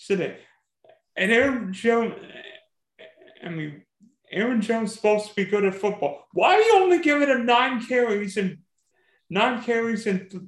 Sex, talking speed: male, 155 wpm